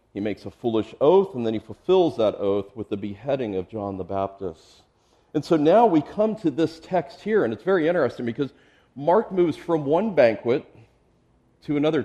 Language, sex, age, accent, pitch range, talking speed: English, male, 40-59, American, 105-165 Hz, 195 wpm